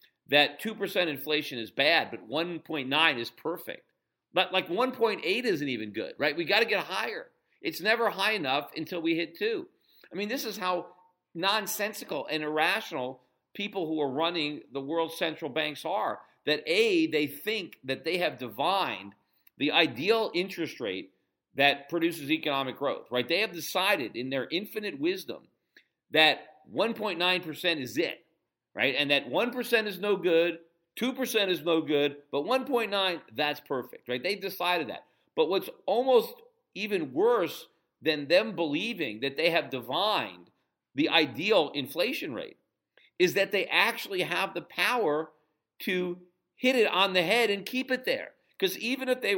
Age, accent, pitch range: 50-69, American, 150-225 Hz